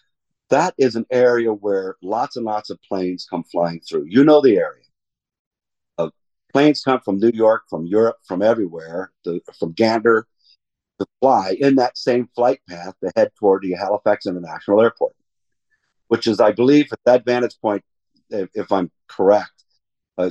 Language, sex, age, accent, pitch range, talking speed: English, male, 50-69, American, 95-130 Hz, 170 wpm